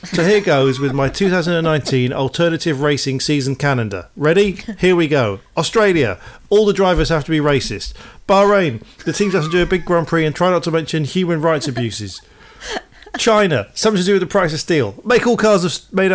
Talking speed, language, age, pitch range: 195 wpm, English, 40-59, 150-210 Hz